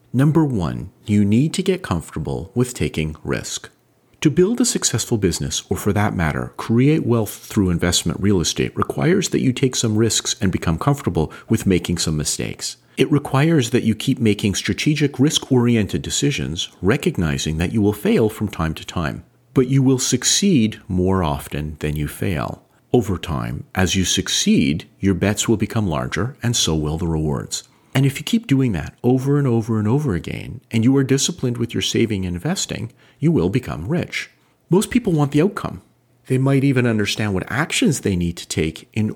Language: English